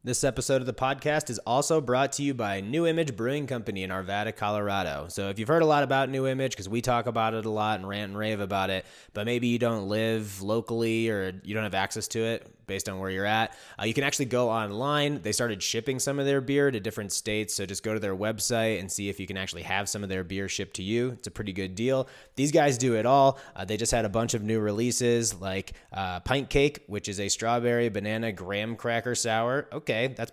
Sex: male